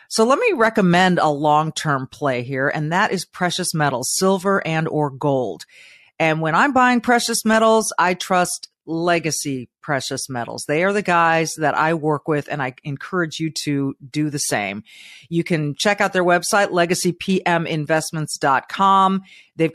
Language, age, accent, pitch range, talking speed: English, 40-59, American, 155-205 Hz, 160 wpm